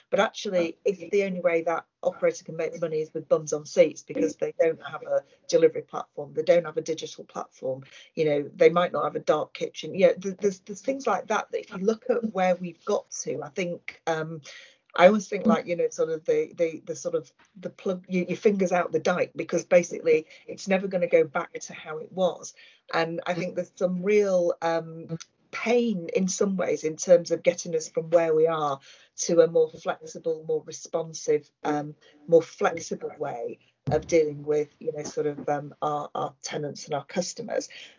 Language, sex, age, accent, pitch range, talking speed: English, female, 40-59, British, 170-265 Hz, 205 wpm